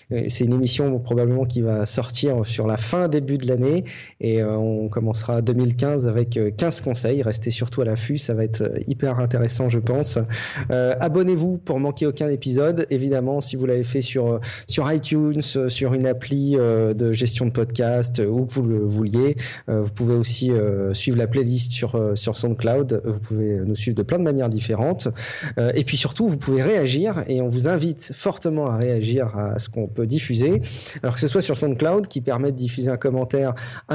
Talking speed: 195 wpm